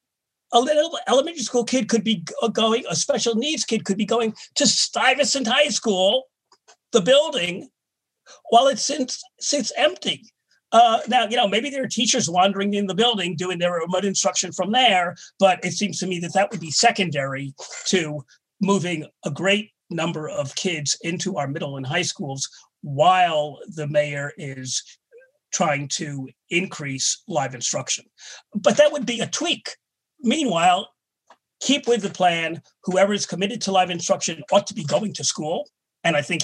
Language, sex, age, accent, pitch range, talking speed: English, male, 40-59, American, 150-230 Hz, 170 wpm